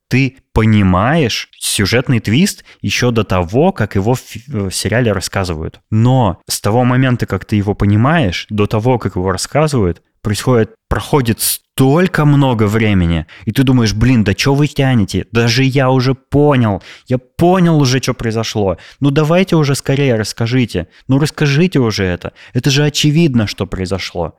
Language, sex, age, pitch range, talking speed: Russian, male, 20-39, 95-130 Hz, 150 wpm